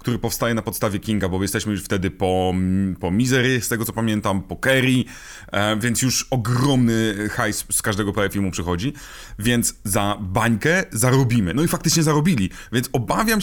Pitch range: 105-145 Hz